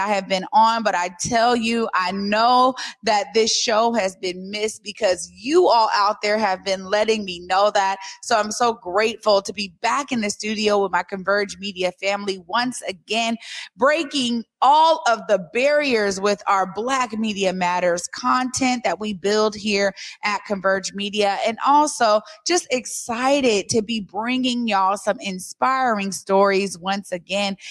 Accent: American